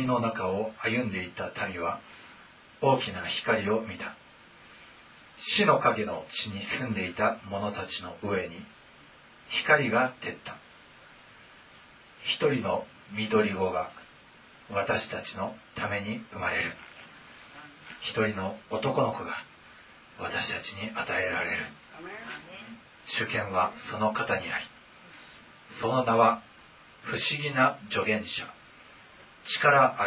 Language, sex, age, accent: Japanese, male, 40-59, native